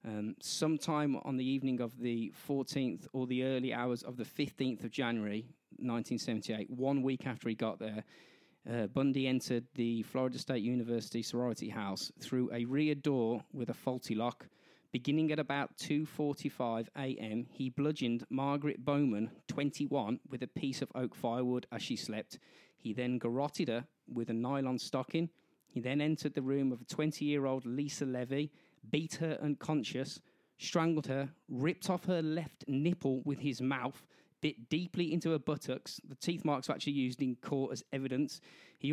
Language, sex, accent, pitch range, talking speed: English, male, British, 125-150 Hz, 165 wpm